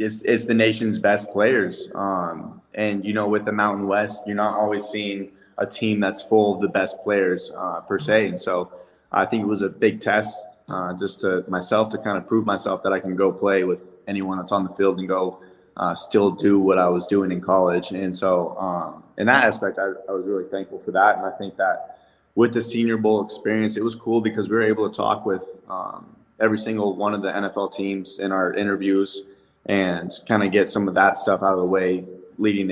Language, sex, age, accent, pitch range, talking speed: English, male, 20-39, American, 95-105 Hz, 230 wpm